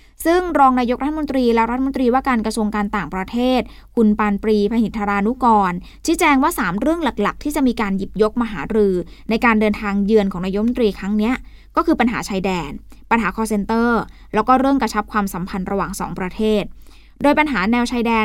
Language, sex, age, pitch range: Thai, female, 20-39, 205-250 Hz